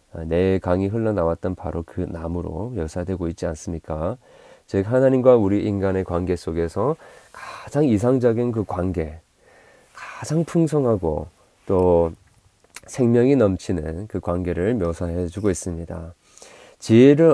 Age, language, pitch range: 30-49, Korean, 85-125 Hz